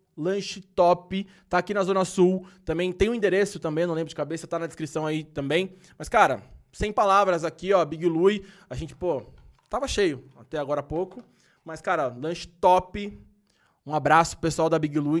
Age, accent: 20-39, Brazilian